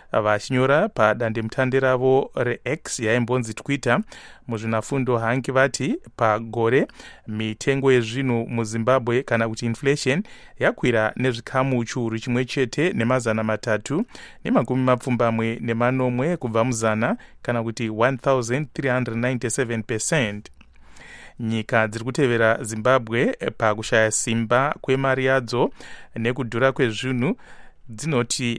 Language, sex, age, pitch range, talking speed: English, male, 30-49, 115-130 Hz, 95 wpm